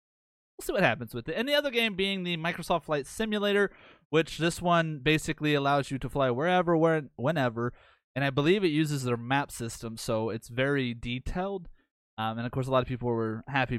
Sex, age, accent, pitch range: male, 20-39, American, 115-165 Hz